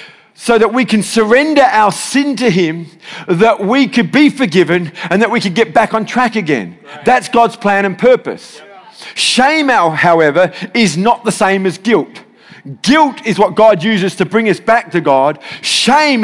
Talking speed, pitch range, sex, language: 175 wpm, 195-245 Hz, male, English